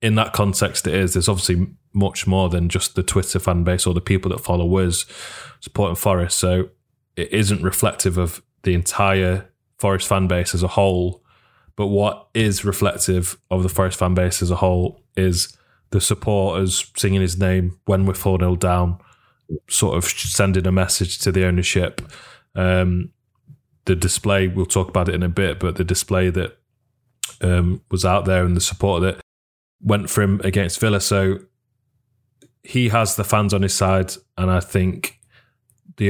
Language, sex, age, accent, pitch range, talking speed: English, male, 20-39, British, 90-100 Hz, 175 wpm